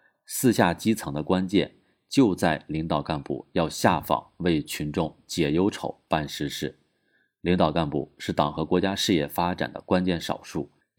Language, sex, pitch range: Chinese, male, 80-110 Hz